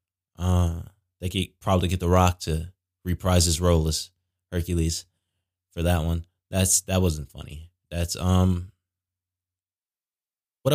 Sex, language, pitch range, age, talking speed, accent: male, English, 90-100 Hz, 20-39, 130 wpm, American